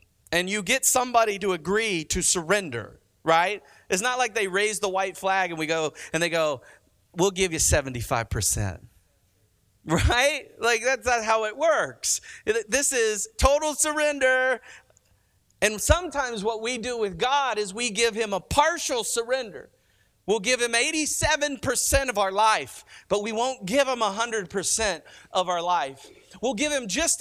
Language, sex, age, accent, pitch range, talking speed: English, male, 40-59, American, 185-270 Hz, 160 wpm